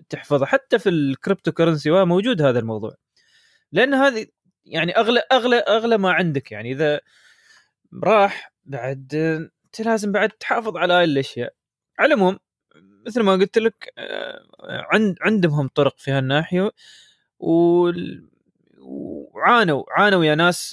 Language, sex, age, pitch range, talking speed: Arabic, male, 20-39, 150-200 Hz, 125 wpm